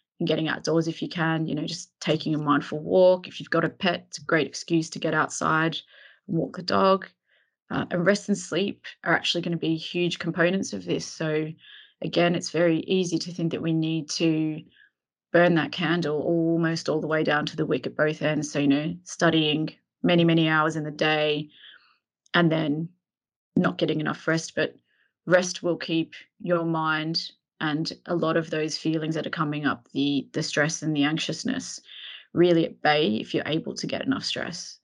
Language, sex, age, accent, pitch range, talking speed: English, female, 20-39, Australian, 155-175 Hz, 200 wpm